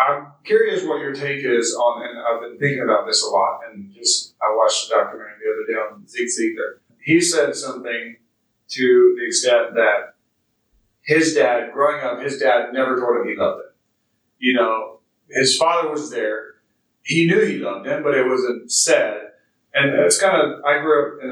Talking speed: 195 wpm